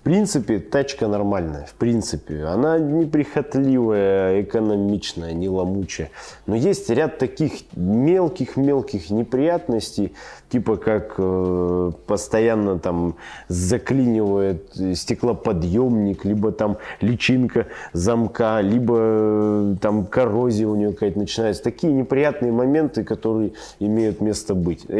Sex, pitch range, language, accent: male, 95-120 Hz, Russian, native